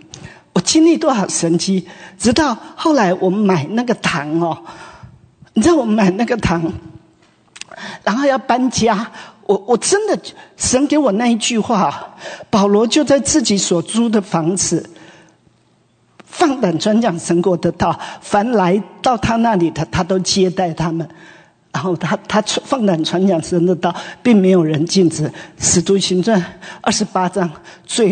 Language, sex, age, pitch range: English, male, 50-69, 175-235 Hz